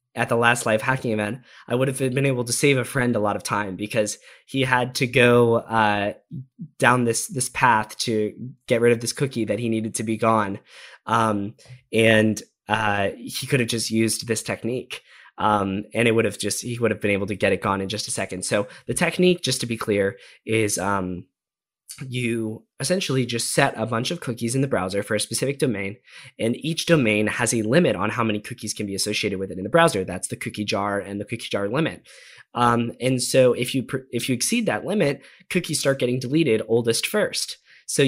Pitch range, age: 105-130 Hz, 10-29